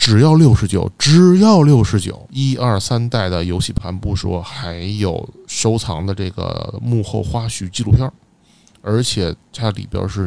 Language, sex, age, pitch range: Chinese, male, 20-39, 95-125 Hz